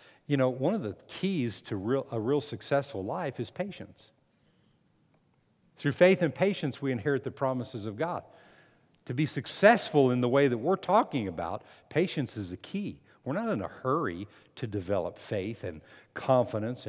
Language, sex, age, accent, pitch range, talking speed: English, male, 50-69, American, 105-145 Hz, 165 wpm